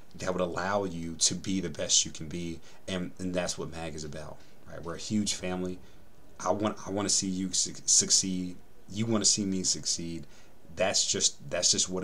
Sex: male